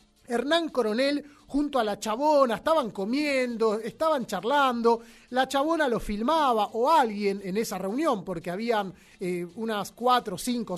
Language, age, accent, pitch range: Spanish, 30-49, Argentinian, 220-290 Hz